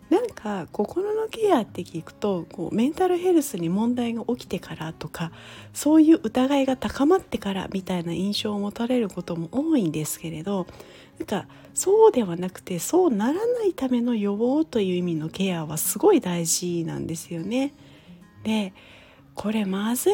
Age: 40-59